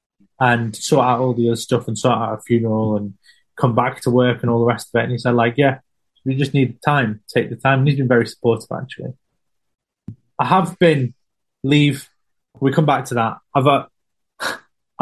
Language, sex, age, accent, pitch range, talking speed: English, male, 20-39, British, 115-145 Hz, 210 wpm